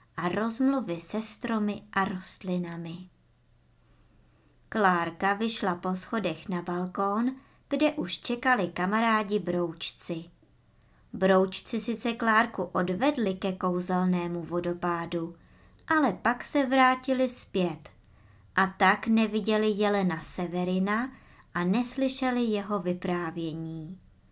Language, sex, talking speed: Czech, male, 95 wpm